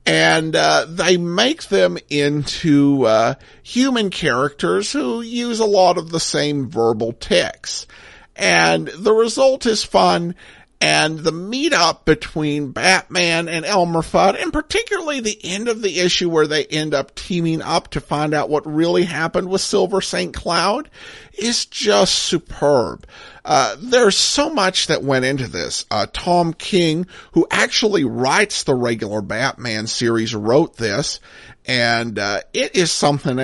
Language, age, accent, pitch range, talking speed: English, 50-69, American, 135-205 Hz, 145 wpm